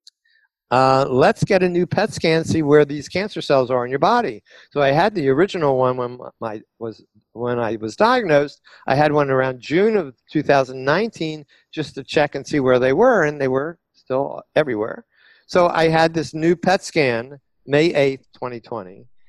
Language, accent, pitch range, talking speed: English, American, 130-185 Hz, 185 wpm